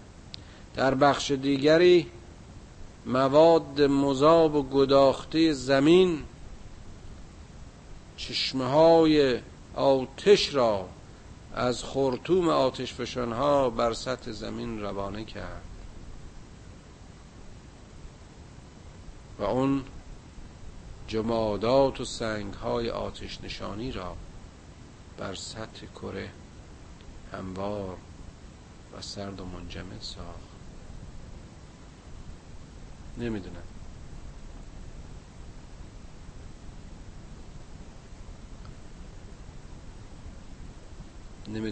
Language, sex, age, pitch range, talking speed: Persian, male, 50-69, 90-120 Hz, 60 wpm